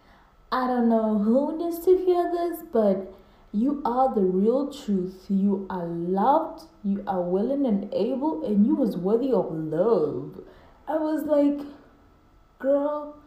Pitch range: 195-255 Hz